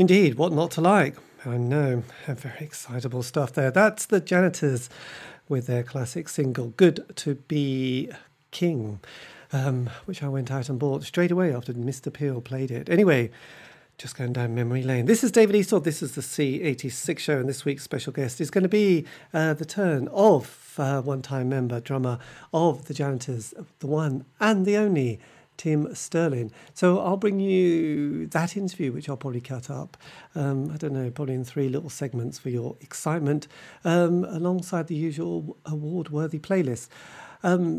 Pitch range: 130-175 Hz